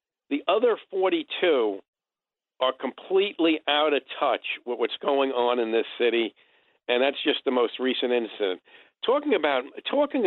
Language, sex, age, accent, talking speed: English, male, 50-69, American, 145 wpm